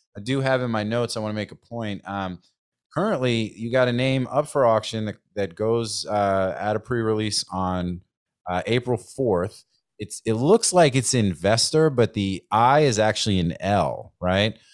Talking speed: 185 wpm